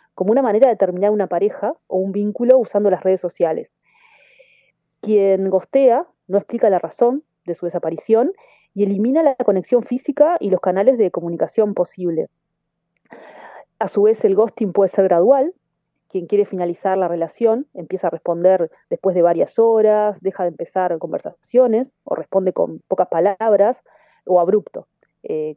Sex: female